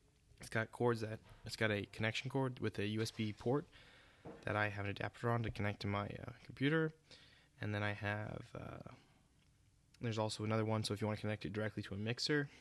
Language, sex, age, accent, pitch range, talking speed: English, male, 20-39, American, 105-125 Hz, 215 wpm